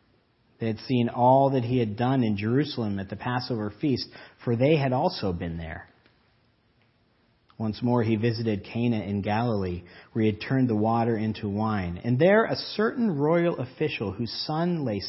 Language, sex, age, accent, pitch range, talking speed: English, male, 40-59, American, 105-130 Hz, 175 wpm